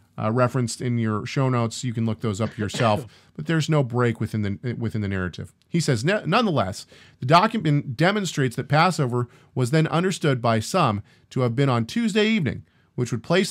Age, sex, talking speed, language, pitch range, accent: 40-59, male, 190 wpm, English, 110-145 Hz, American